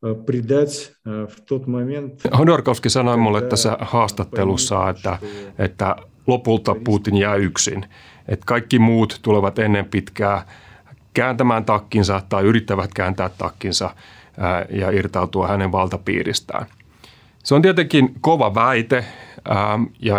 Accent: native